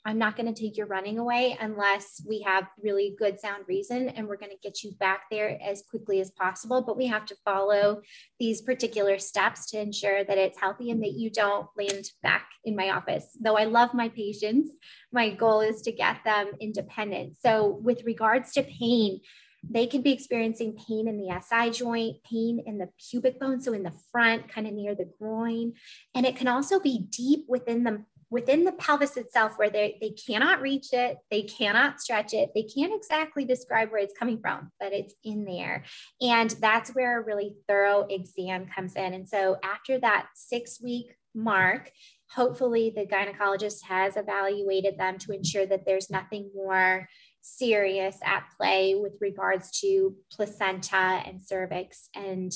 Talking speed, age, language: 185 wpm, 20-39, English